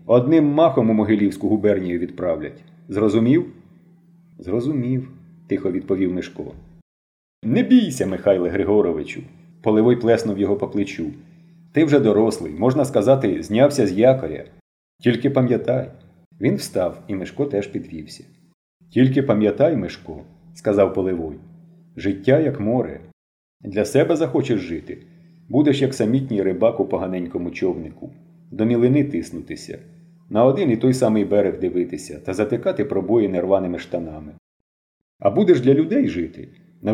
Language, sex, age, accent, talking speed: Ukrainian, male, 40-59, native, 130 wpm